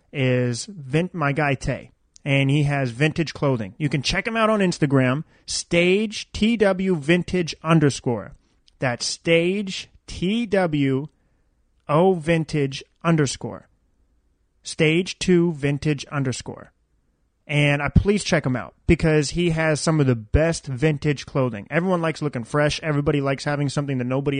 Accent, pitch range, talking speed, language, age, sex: American, 130-165 Hz, 140 wpm, English, 30-49, male